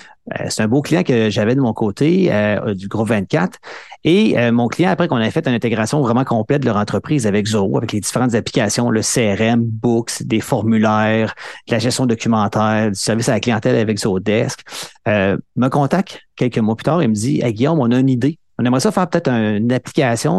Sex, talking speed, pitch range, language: male, 220 wpm, 110-145 Hz, French